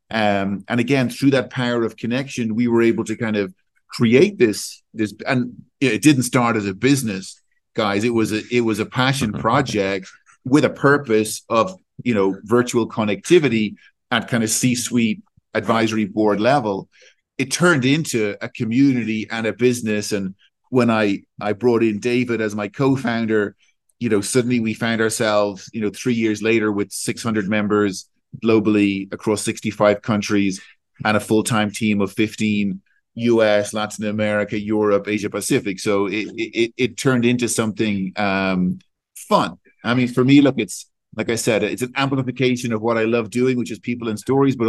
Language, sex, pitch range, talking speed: Portuguese, male, 105-125 Hz, 170 wpm